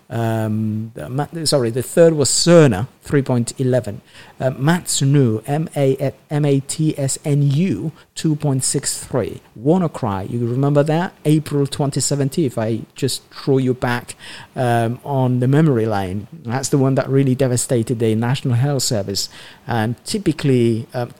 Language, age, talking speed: English, 50-69, 125 wpm